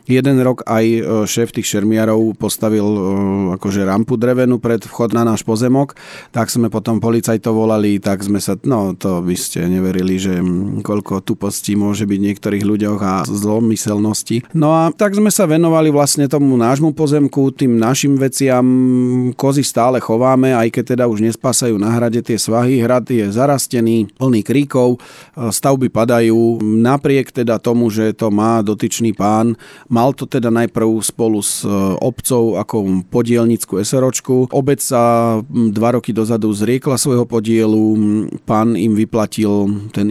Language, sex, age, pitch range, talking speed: Slovak, male, 40-59, 105-125 Hz, 150 wpm